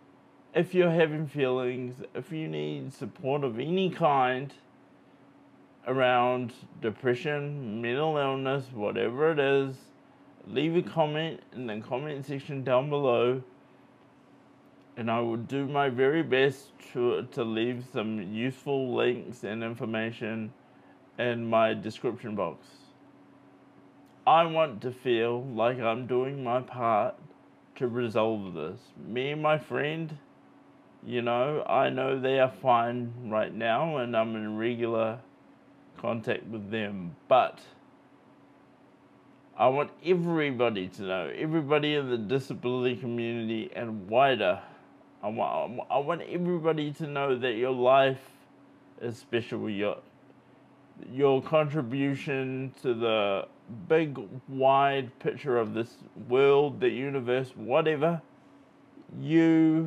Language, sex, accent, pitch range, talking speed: English, male, Australian, 115-140 Hz, 115 wpm